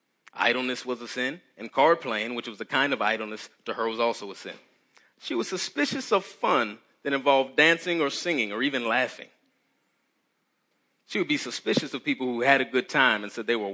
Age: 30-49